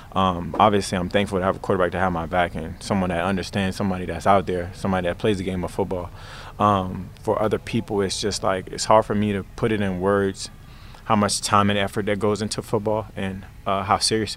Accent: American